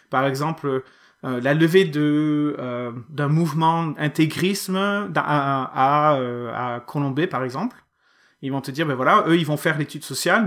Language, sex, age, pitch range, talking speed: French, male, 30-49, 135-175 Hz, 170 wpm